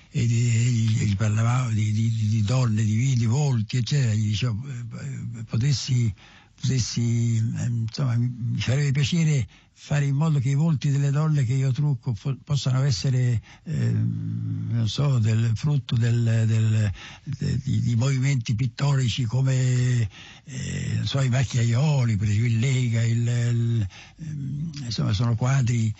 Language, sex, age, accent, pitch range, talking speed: Italian, male, 60-79, native, 105-130 Hz, 135 wpm